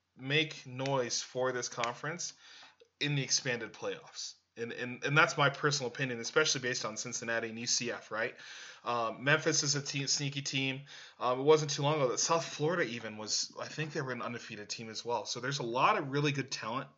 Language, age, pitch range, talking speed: English, 20-39, 120-145 Hz, 205 wpm